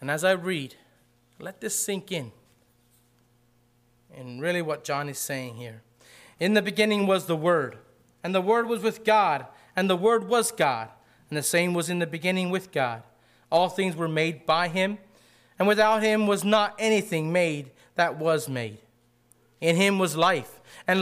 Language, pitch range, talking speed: English, 140-210 Hz, 175 wpm